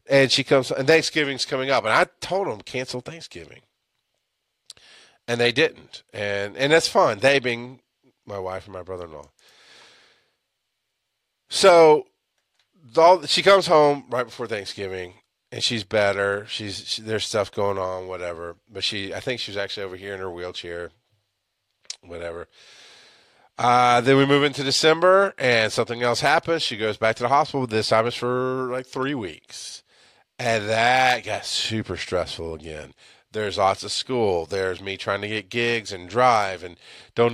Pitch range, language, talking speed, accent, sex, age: 100-135 Hz, English, 160 wpm, American, male, 30-49